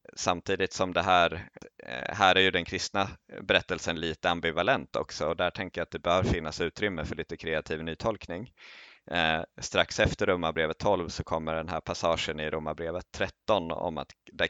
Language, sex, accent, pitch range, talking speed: Swedish, male, native, 80-95 Hz, 180 wpm